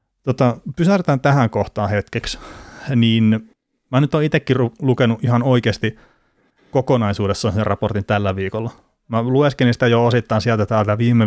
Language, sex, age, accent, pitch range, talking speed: Finnish, male, 30-49, native, 105-120 Hz, 140 wpm